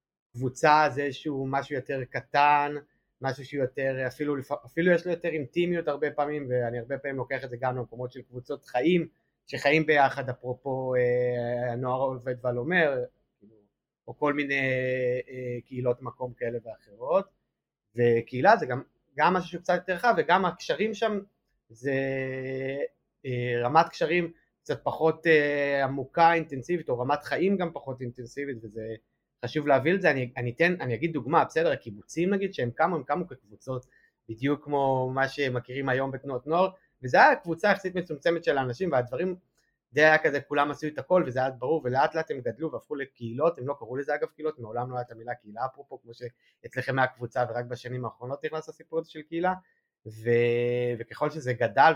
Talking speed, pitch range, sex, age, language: 165 wpm, 125-155 Hz, male, 30-49, Hebrew